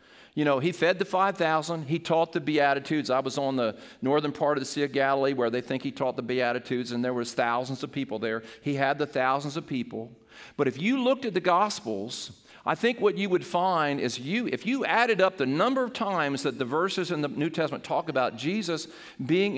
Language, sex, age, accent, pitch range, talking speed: English, male, 50-69, American, 130-185 Hz, 230 wpm